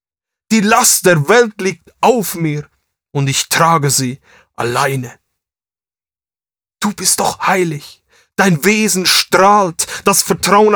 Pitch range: 140-215 Hz